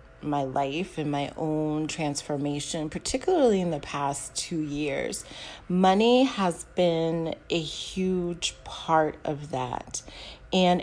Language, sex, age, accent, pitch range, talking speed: English, female, 30-49, American, 150-180 Hz, 115 wpm